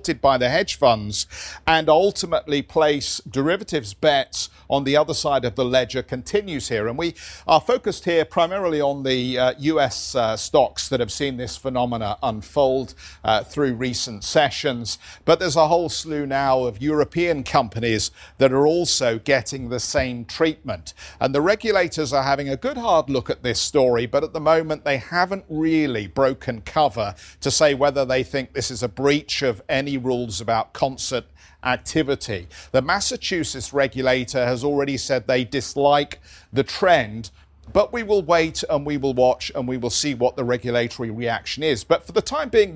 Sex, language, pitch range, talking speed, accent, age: male, English, 120-160 Hz, 175 wpm, British, 50-69